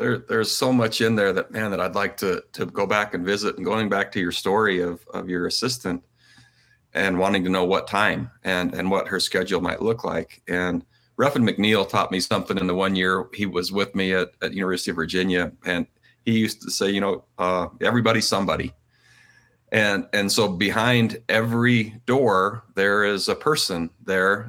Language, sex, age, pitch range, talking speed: English, male, 40-59, 95-115 Hz, 200 wpm